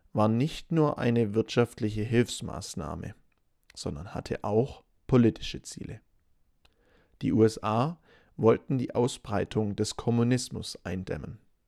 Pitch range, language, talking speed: 100-120 Hz, English, 100 wpm